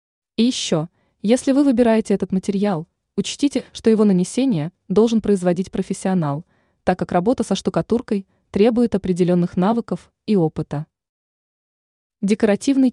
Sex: female